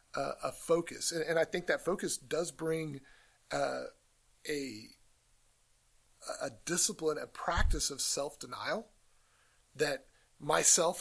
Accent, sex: American, male